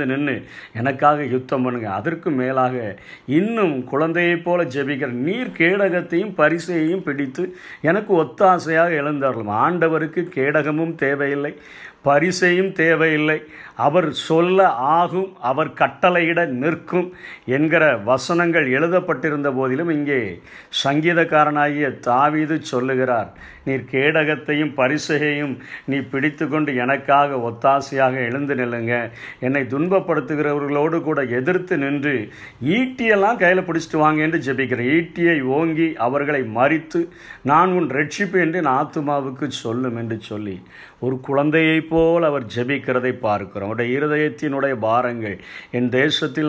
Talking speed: 100 wpm